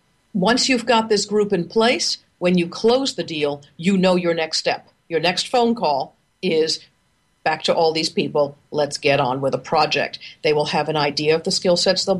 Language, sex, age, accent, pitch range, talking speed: English, female, 50-69, American, 165-225 Hz, 210 wpm